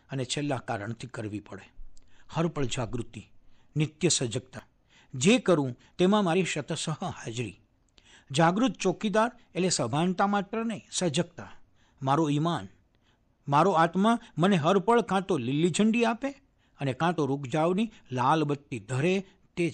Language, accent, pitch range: Gujarati, native, 115-180 Hz